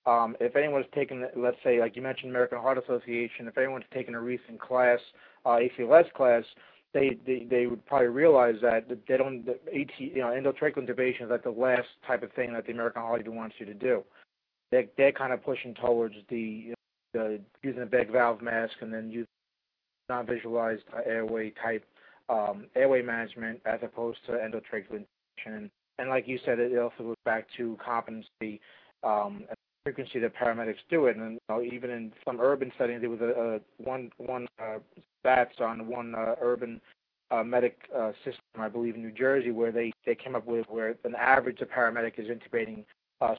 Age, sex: 40-59, male